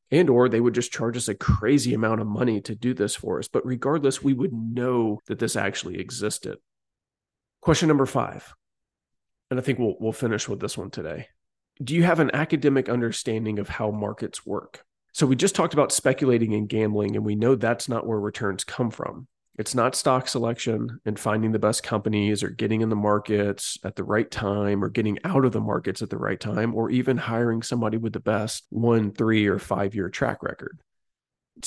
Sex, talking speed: male, 205 wpm